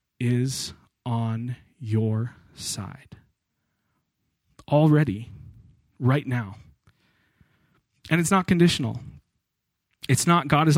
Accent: American